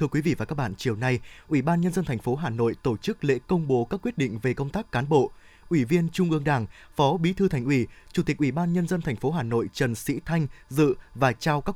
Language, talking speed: Vietnamese, 285 wpm